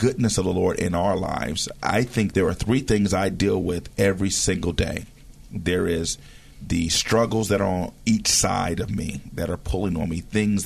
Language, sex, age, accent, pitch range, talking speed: English, male, 40-59, American, 90-115 Hz, 205 wpm